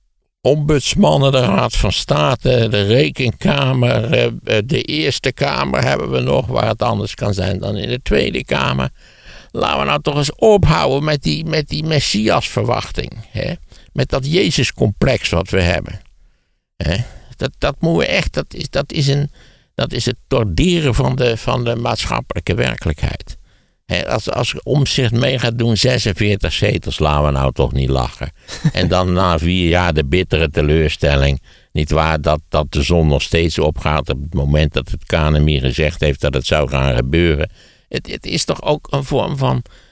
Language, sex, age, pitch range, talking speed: Dutch, male, 60-79, 75-125 Hz, 160 wpm